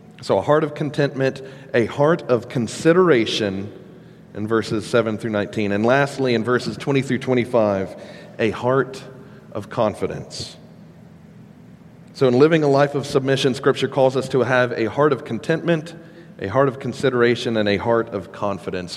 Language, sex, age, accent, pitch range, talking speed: English, male, 40-59, American, 110-145 Hz, 160 wpm